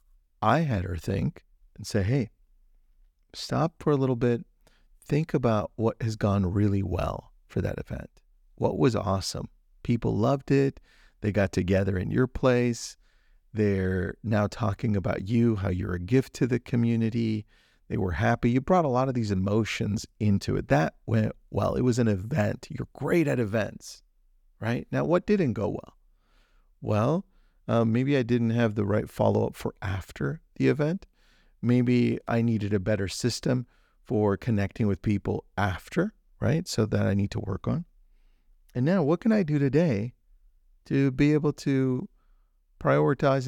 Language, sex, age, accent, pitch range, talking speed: English, male, 40-59, American, 100-130 Hz, 165 wpm